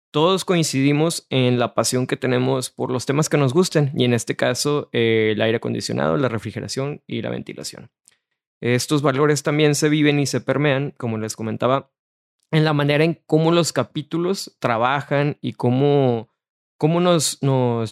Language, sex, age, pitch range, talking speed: English, male, 20-39, 120-145 Hz, 165 wpm